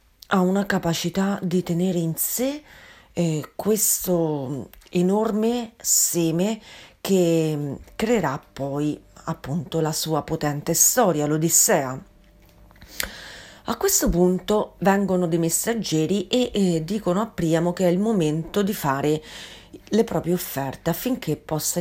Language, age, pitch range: Italian, 40-59, 155-205 Hz